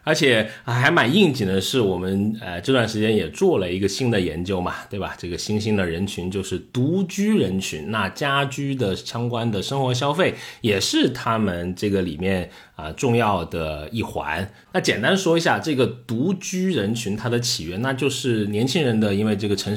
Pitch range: 100-140 Hz